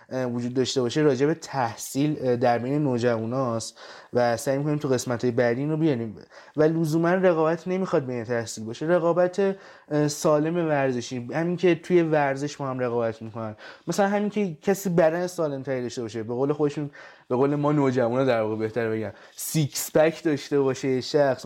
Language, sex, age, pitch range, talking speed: Persian, male, 20-39, 125-165 Hz, 160 wpm